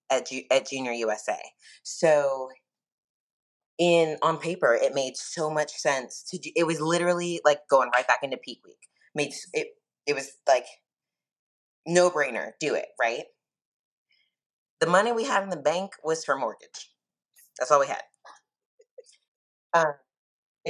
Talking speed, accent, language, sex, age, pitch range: 145 wpm, American, English, female, 20-39, 140-175 Hz